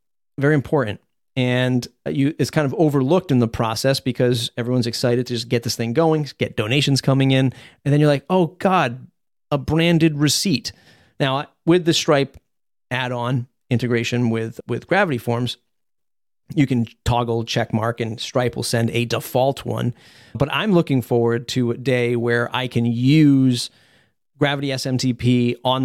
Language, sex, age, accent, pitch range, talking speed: English, male, 40-59, American, 120-135 Hz, 160 wpm